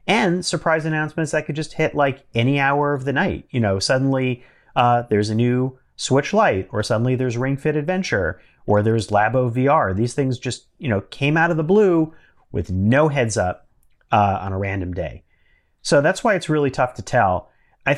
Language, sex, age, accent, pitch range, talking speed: English, male, 30-49, American, 110-145 Hz, 200 wpm